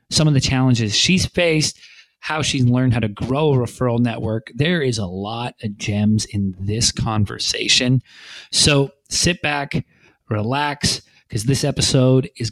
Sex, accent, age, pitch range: male, American, 30-49, 115-145 Hz